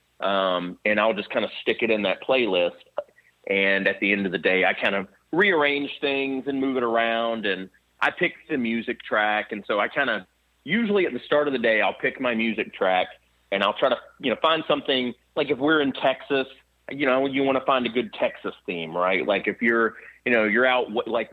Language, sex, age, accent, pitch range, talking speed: English, male, 30-49, American, 100-125 Hz, 230 wpm